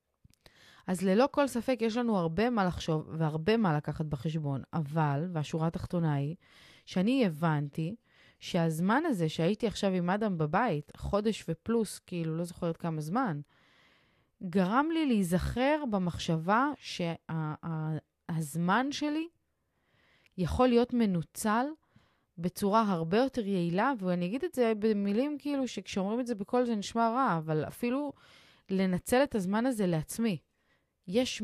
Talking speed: 130 wpm